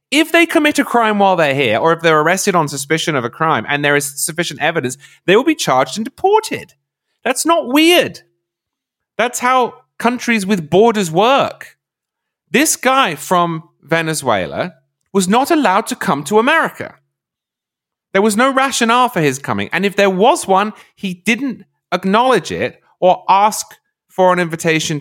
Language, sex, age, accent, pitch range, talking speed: English, male, 30-49, British, 130-220 Hz, 165 wpm